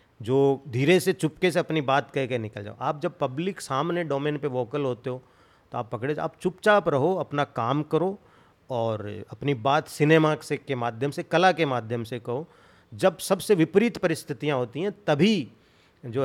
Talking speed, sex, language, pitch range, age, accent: 190 wpm, male, Hindi, 125-170 Hz, 40-59, native